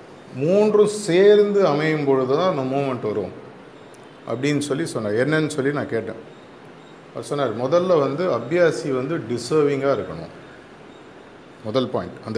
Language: Tamil